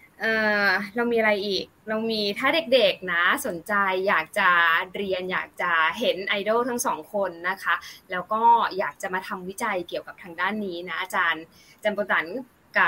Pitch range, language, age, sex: 175-220 Hz, Thai, 20-39, female